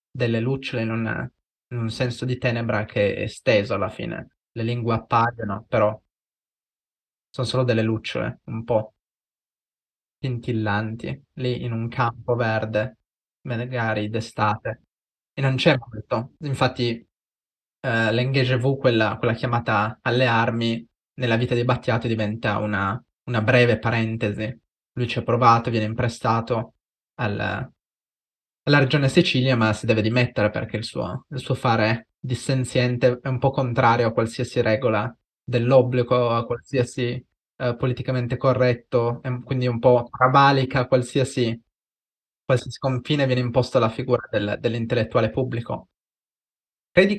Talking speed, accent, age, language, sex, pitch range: 130 wpm, native, 20-39, Italian, male, 115-130 Hz